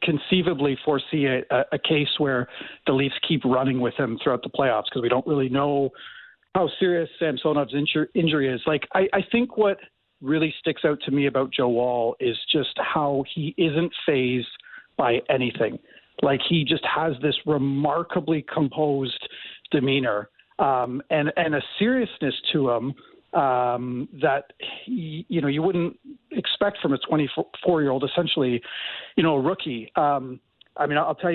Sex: male